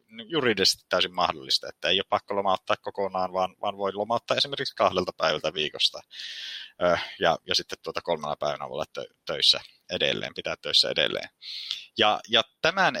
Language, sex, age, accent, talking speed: Finnish, male, 30-49, native, 135 wpm